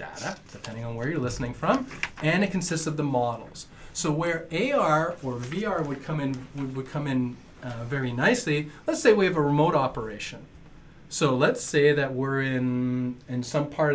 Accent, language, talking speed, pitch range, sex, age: American, English, 190 wpm, 125-155 Hz, male, 30-49